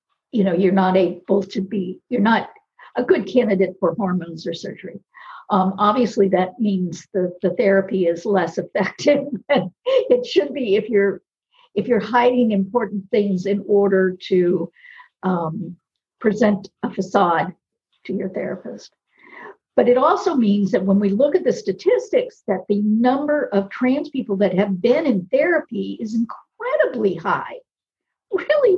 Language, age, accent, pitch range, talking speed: English, 50-69, American, 190-255 Hz, 150 wpm